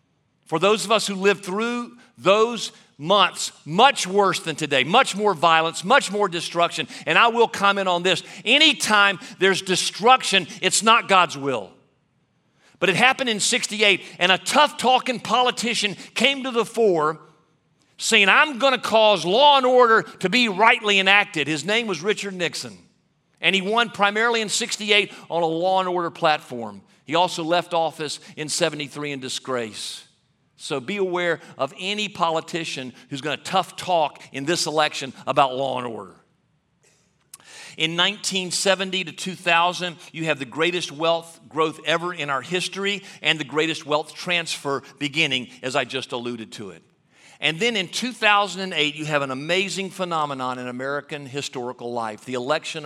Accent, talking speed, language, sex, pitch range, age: American, 160 wpm, English, male, 150-200 Hz, 50-69